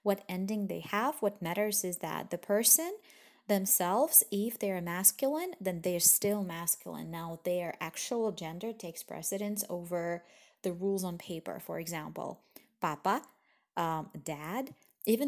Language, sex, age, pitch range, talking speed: Russian, female, 20-39, 170-220 Hz, 145 wpm